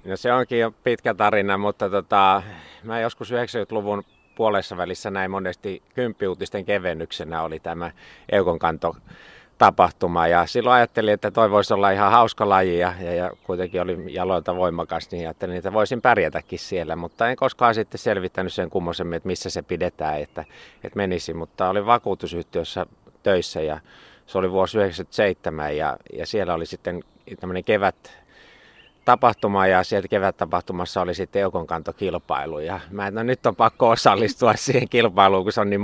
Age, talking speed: 30-49, 155 wpm